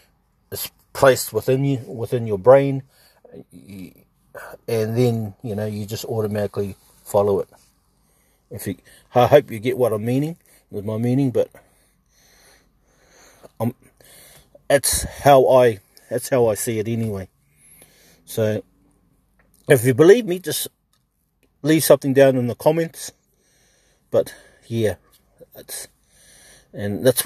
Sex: male